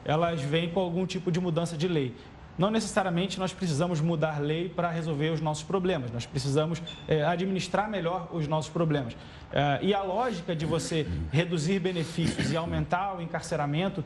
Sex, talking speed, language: male, 160 wpm, Portuguese